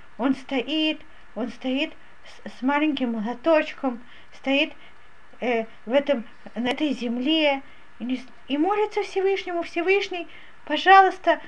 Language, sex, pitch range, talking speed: Russian, female, 260-360 Hz, 110 wpm